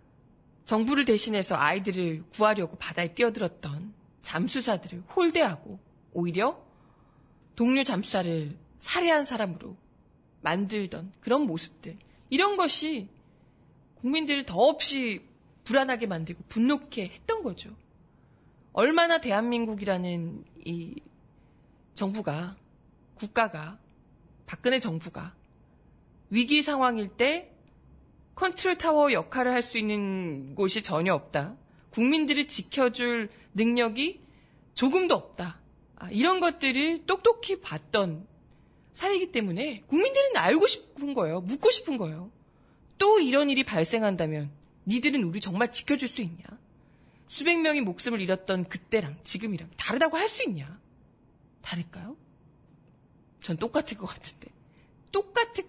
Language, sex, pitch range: Korean, female, 180-290 Hz